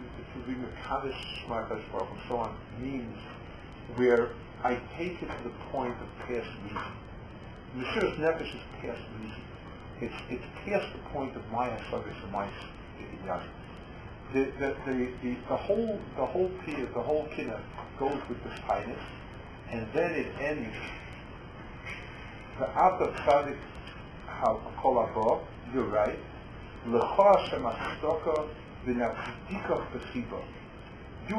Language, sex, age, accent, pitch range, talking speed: English, male, 50-69, American, 110-135 Hz, 115 wpm